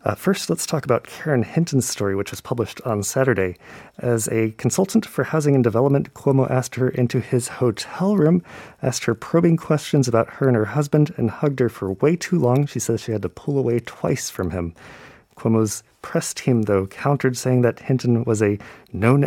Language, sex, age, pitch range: Korean, male, 30-49, 110-140 Hz